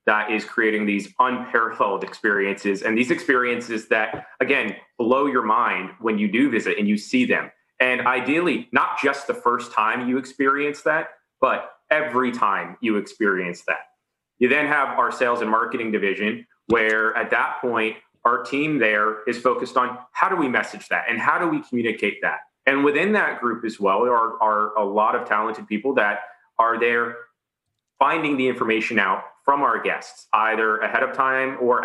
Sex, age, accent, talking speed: male, 30-49, American, 180 wpm